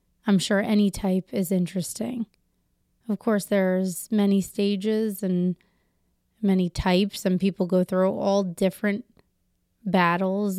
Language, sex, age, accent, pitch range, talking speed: English, female, 20-39, American, 185-210 Hz, 120 wpm